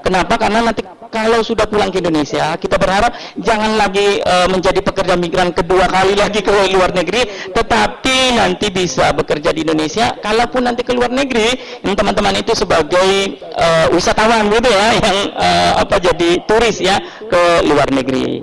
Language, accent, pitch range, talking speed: Indonesian, native, 165-210 Hz, 160 wpm